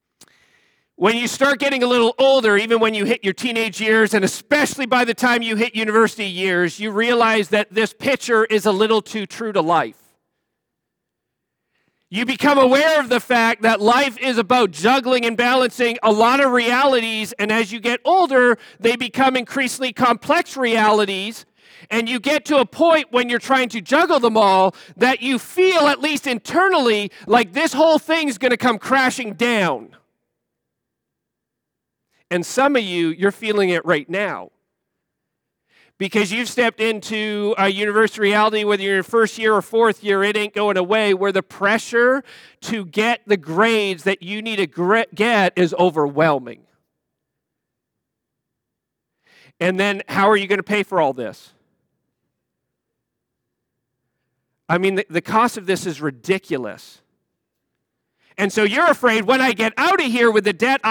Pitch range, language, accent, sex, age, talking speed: 200-250 Hz, English, American, male, 40-59, 160 wpm